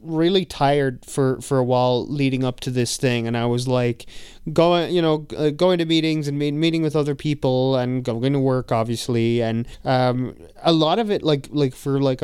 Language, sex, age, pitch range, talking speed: English, male, 20-39, 125-145 Hz, 200 wpm